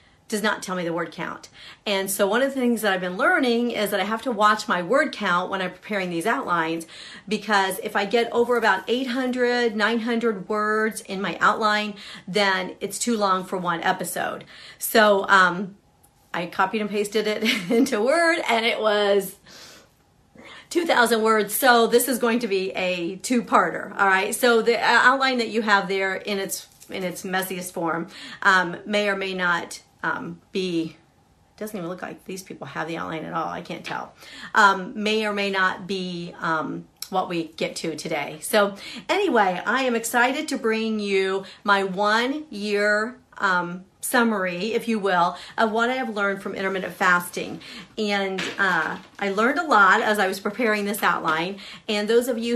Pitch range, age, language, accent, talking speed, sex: 190-225 Hz, 40-59, English, American, 185 wpm, female